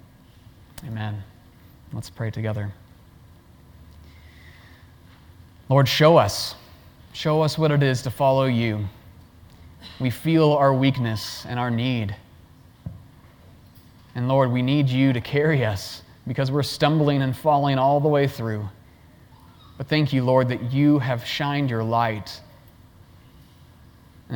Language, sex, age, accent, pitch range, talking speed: English, male, 30-49, American, 100-135 Hz, 125 wpm